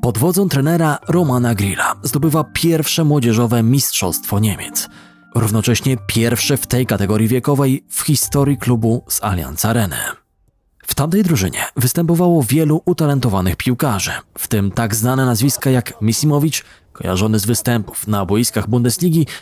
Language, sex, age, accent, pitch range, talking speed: Polish, male, 20-39, native, 110-150 Hz, 130 wpm